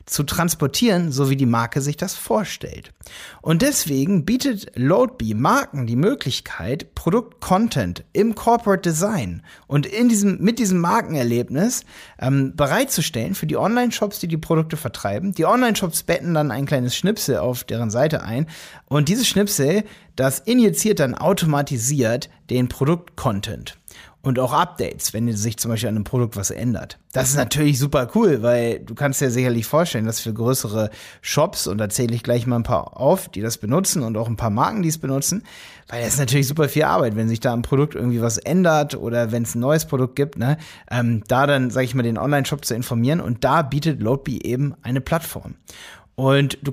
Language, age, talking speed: German, 30-49, 185 wpm